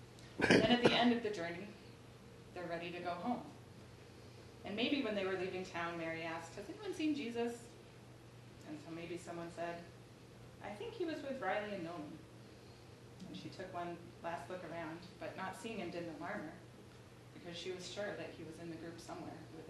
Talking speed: 185 wpm